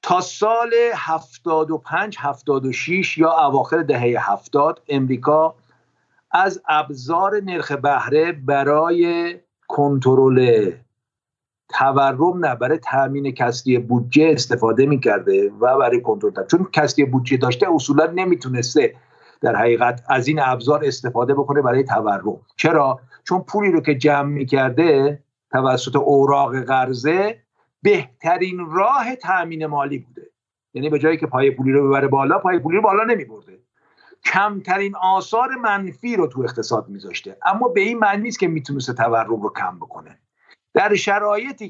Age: 50-69